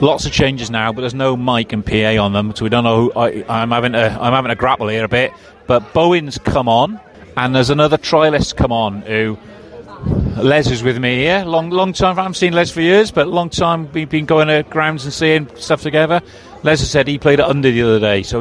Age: 40-59